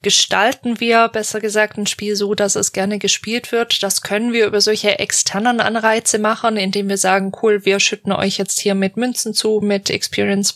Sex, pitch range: female, 195-225 Hz